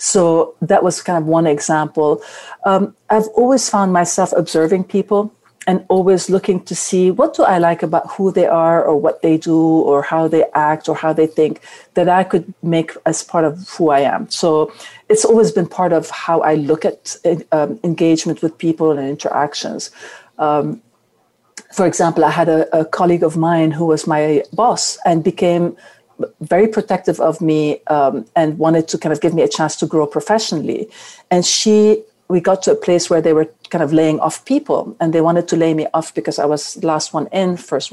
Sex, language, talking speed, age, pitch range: female, English, 200 wpm, 50-69, 160-185 Hz